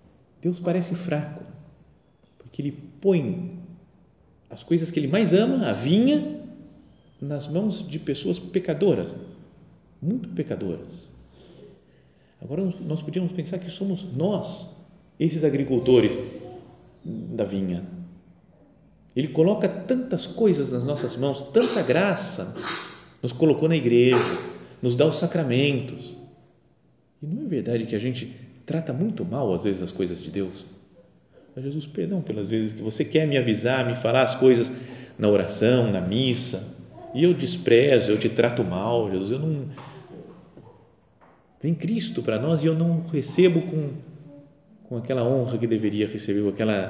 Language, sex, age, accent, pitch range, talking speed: Portuguese, male, 40-59, Brazilian, 110-175 Hz, 140 wpm